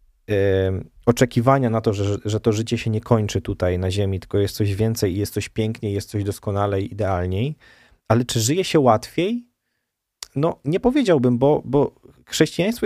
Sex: male